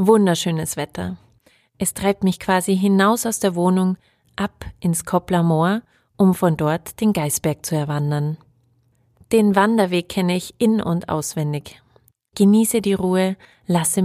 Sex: female